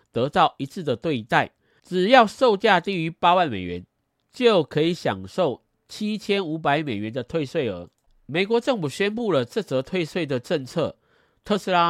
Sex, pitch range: male, 120-185 Hz